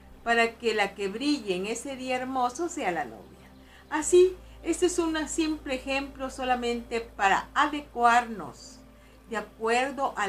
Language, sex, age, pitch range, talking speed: Spanish, female, 50-69, 225-280 Hz, 140 wpm